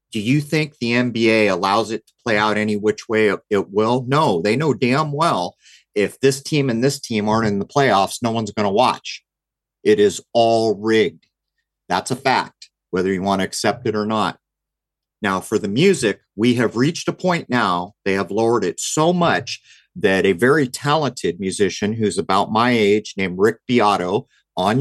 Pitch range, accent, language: 105-135 Hz, American, English